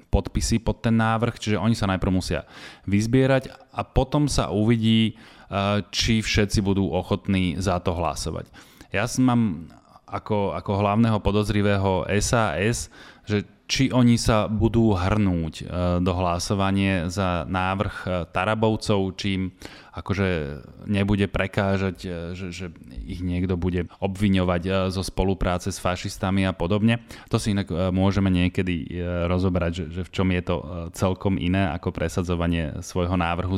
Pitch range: 90-105 Hz